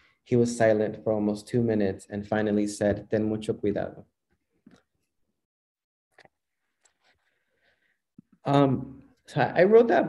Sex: male